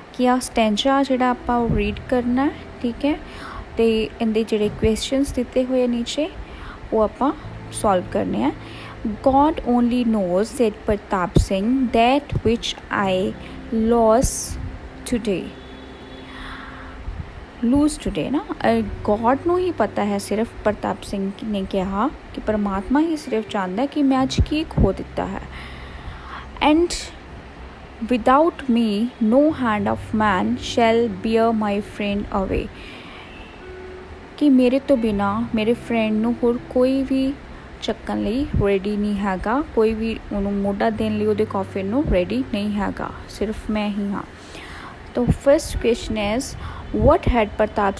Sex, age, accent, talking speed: female, 20-39, Indian, 110 wpm